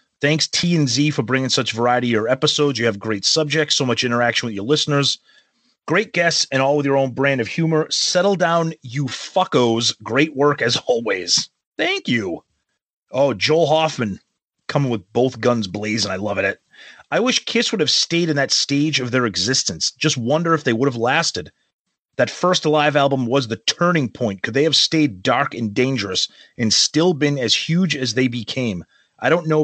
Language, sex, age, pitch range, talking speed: English, male, 30-49, 120-155 Hz, 195 wpm